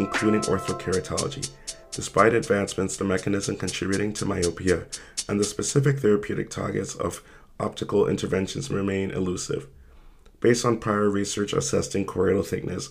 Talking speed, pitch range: 120 wpm, 95-105 Hz